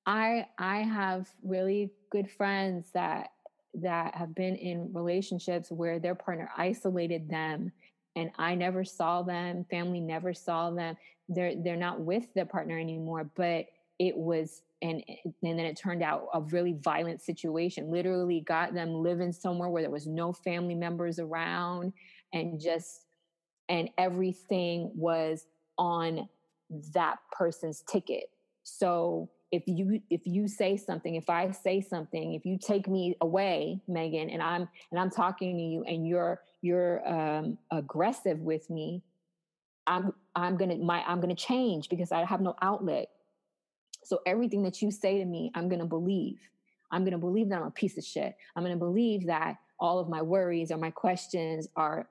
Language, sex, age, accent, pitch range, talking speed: English, female, 20-39, American, 165-185 Hz, 160 wpm